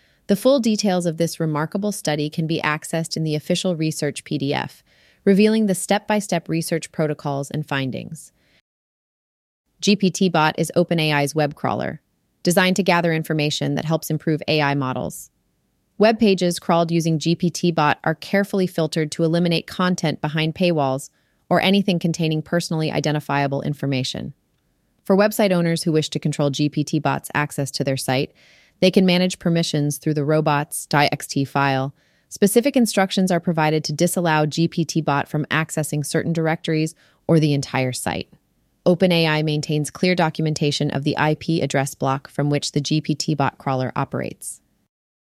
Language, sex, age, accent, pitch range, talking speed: English, female, 30-49, American, 150-175 Hz, 140 wpm